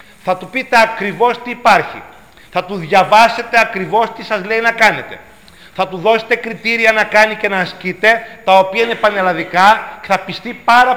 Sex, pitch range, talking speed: male, 185-225 Hz, 175 wpm